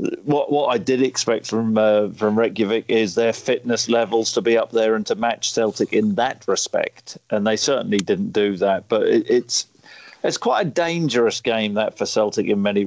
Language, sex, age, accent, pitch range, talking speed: English, male, 40-59, British, 110-130 Hz, 200 wpm